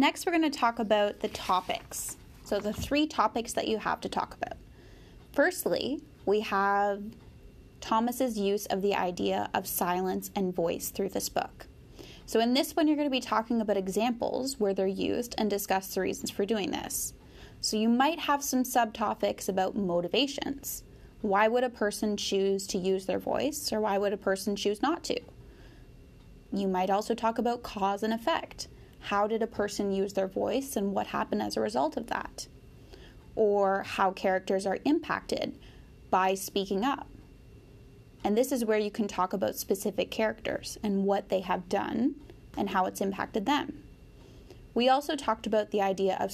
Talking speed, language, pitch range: 175 wpm, English, 195-245 Hz